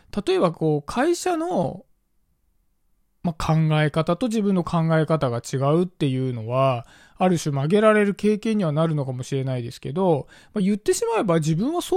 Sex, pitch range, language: male, 140-215 Hz, Japanese